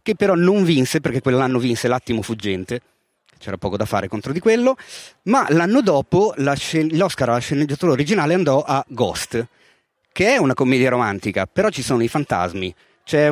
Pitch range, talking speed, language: 115-160 Hz, 165 wpm, Italian